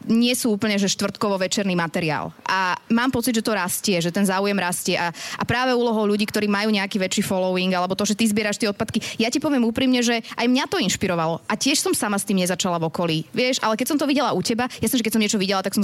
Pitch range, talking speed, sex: 185-230 Hz, 260 wpm, female